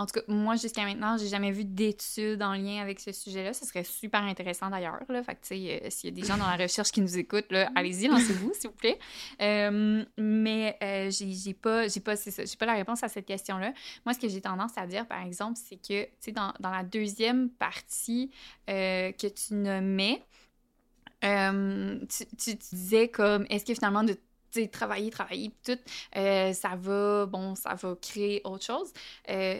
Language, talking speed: French, 210 wpm